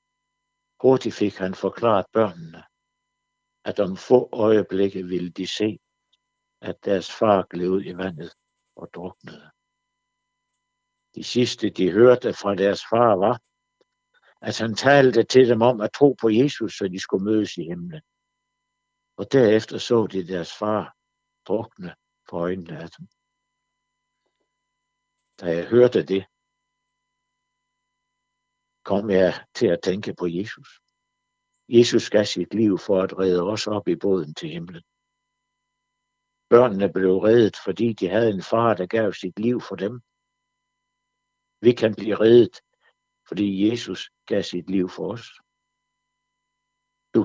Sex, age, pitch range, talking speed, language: male, 60-79, 100-145 Hz, 130 wpm, Danish